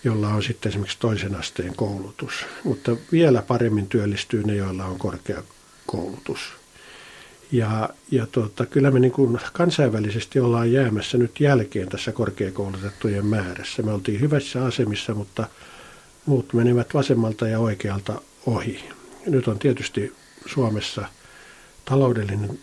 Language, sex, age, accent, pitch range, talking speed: Finnish, male, 50-69, native, 100-125 Hz, 115 wpm